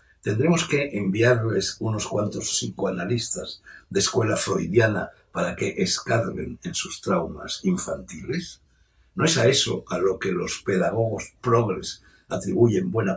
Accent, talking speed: Spanish, 130 wpm